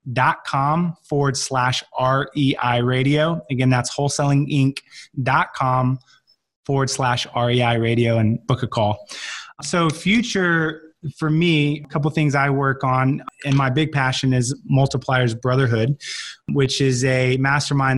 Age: 20-39